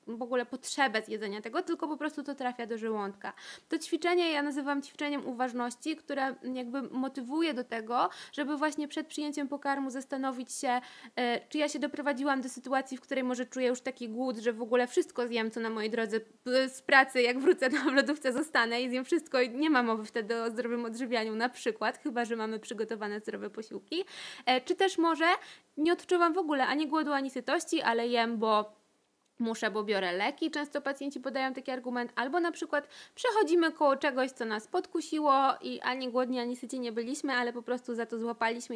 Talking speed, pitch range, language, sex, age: 190 wpm, 240-295 Hz, Polish, female, 20-39